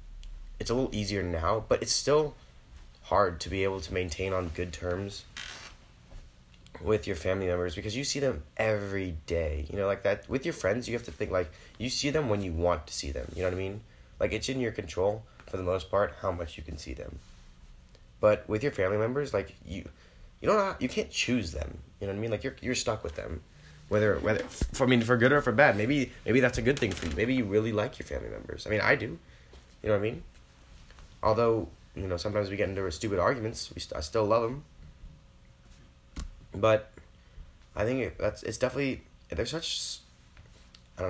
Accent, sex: American, male